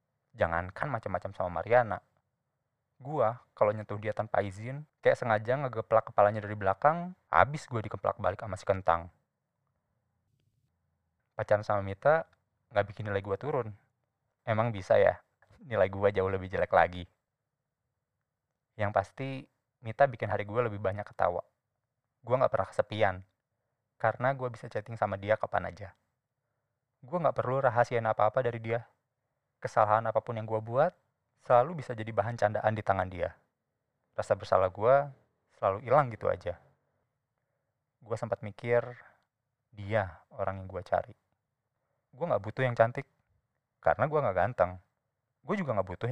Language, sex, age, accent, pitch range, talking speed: Indonesian, male, 20-39, native, 105-130 Hz, 140 wpm